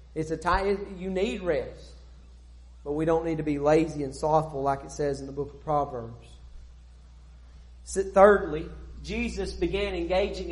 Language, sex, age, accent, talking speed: English, male, 40-59, American, 155 wpm